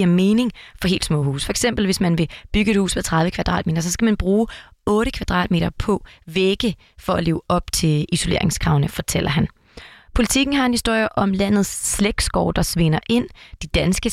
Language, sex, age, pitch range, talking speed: Danish, female, 30-49, 165-205 Hz, 185 wpm